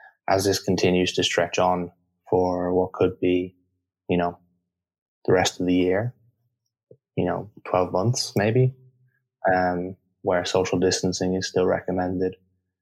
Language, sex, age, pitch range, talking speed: English, male, 20-39, 90-95 Hz, 135 wpm